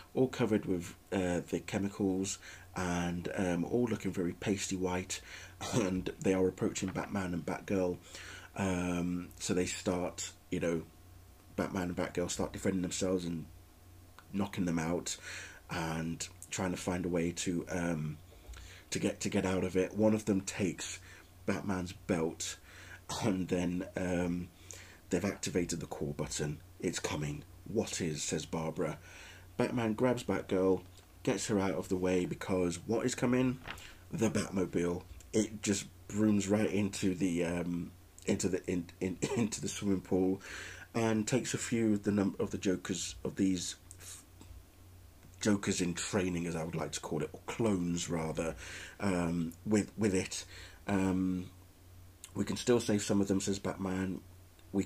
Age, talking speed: 30-49, 155 wpm